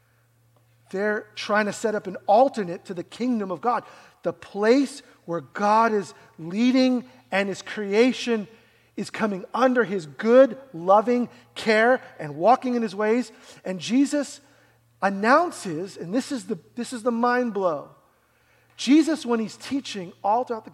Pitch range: 180-245 Hz